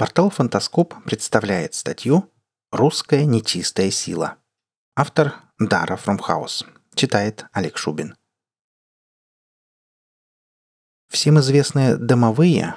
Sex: male